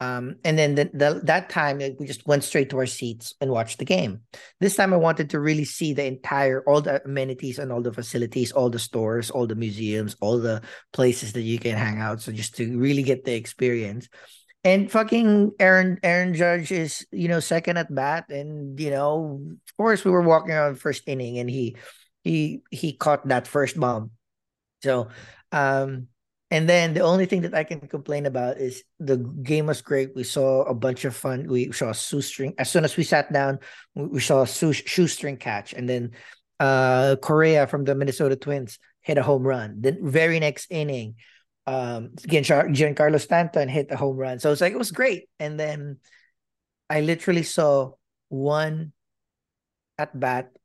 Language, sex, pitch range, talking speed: English, male, 125-155 Hz, 185 wpm